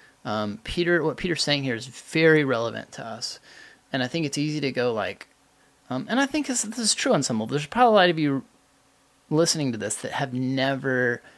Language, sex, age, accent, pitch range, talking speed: English, male, 30-49, American, 110-155 Hz, 215 wpm